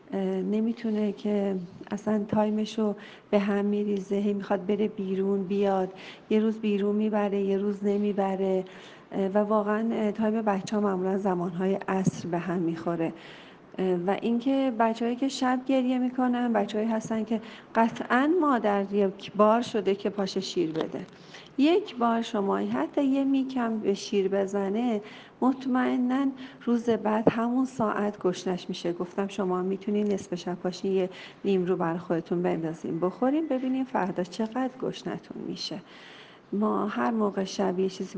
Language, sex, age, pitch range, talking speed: Persian, female, 40-59, 195-230 Hz, 135 wpm